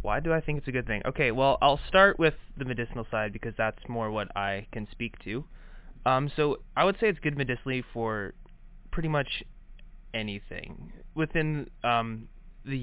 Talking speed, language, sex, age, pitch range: 180 wpm, English, male, 20-39, 110-140 Hz